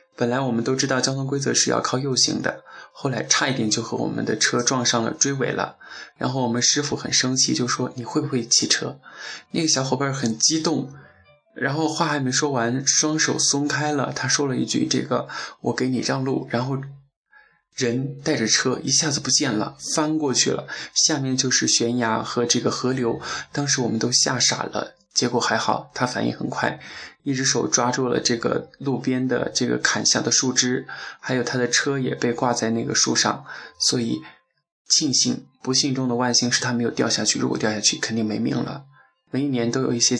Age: 20-39